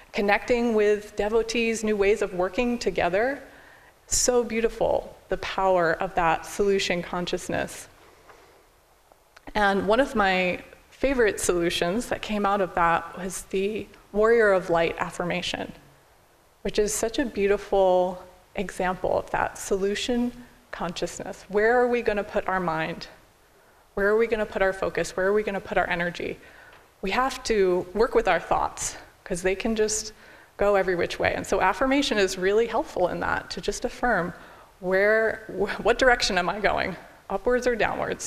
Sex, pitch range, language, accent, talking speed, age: female, 185-230 Hz, English, American, 160 wpm, 20-39